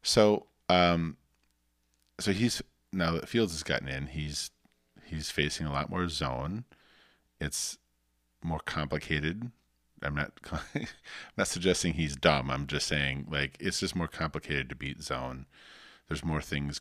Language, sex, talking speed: English, male, 145 wpm